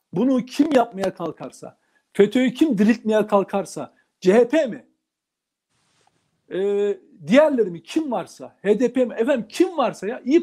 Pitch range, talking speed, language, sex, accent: 190-275 Hz, 125 wpm, Turkish, male, native